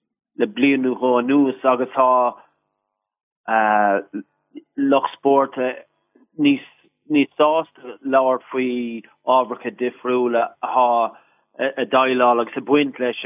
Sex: male